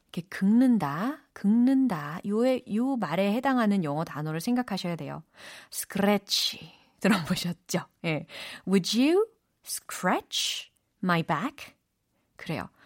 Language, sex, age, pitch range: Korean, female, 30-49, 170-265 Hz